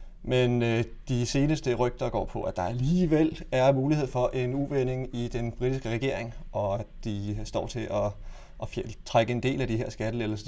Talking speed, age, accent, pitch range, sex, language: 190 wpm, 30-49, native, 105-125 Hz, male, Danish